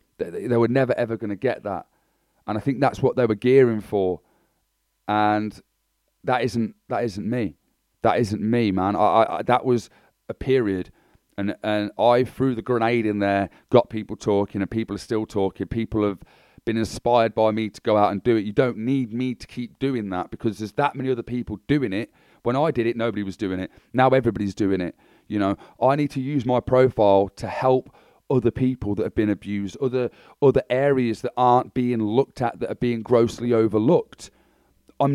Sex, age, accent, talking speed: male, 30-49, British, 205 wpm